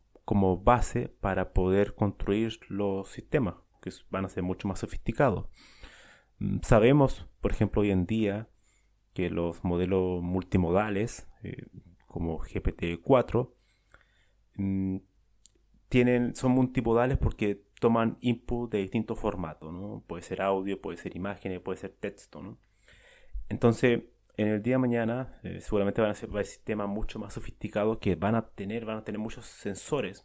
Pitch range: 95-115 Hz